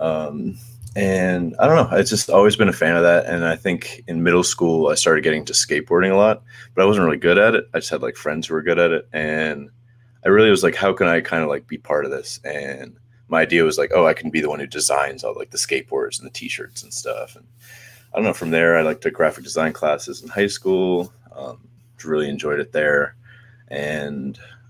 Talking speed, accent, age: 245 wpm, American, 30-49